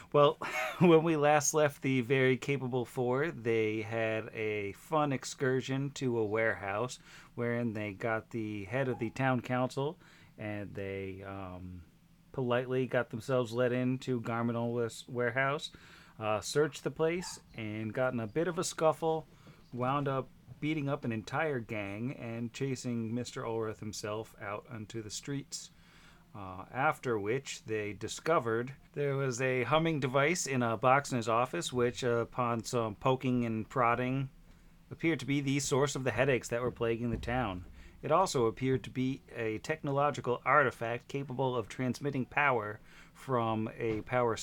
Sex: male